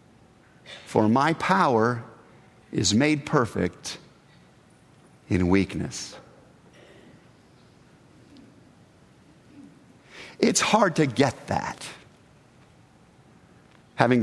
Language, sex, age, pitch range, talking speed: English, male, 50-69, 125-185 Hz, 60 wpm